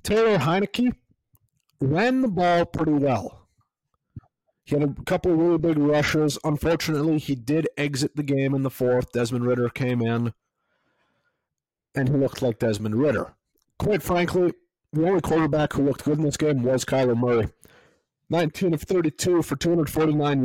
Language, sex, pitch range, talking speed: English, male, 125-165 Hz, 155 wpm